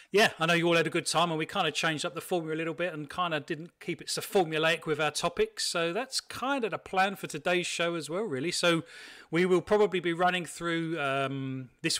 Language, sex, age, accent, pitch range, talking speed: English, male, 40-59, British, 150-185 Hz, 260 wpm